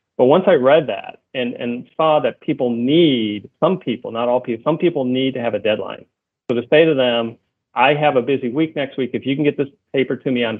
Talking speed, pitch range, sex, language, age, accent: 250 wpm, 115-135 Hz, male, English, 40-59, American